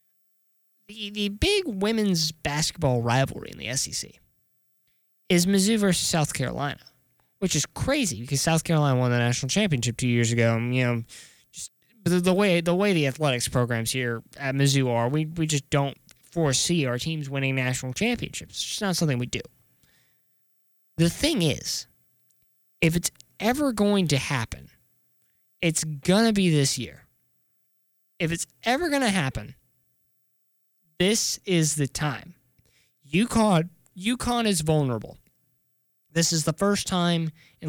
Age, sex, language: 10-29, male, English